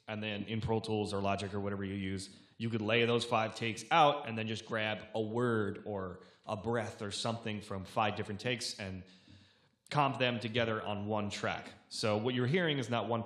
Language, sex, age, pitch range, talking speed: English, male, 20-39, 100-115 Hz, 215 wpm